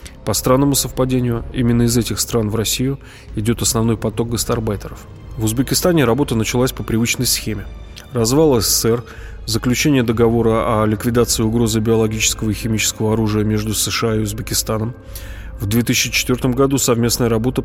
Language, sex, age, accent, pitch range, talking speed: Russian, male, 20-39, native, 110-125 Hz, 135 wpm